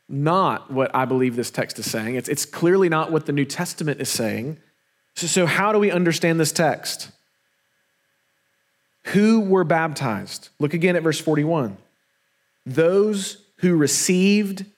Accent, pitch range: American, 140-195 Hz